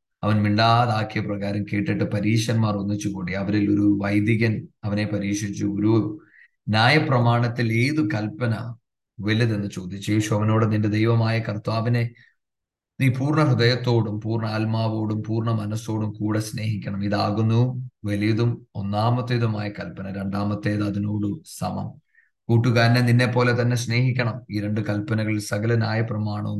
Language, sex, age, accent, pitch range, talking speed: English, male, 30-49, Indian, 105-120 Hz, 70 wpm